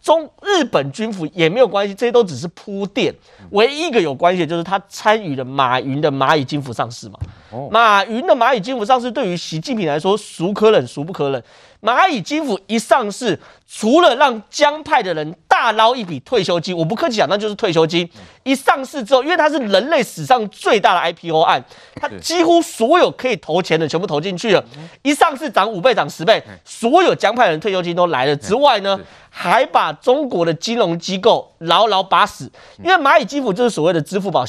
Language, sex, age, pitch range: Chinese, male, 30-49, 165-265 Hz